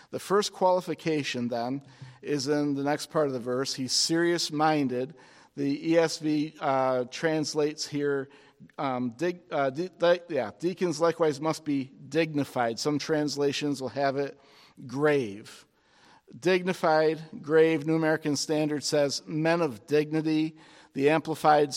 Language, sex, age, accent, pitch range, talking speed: English, male, 50-69, American, 135-165 Hz, 130 wpm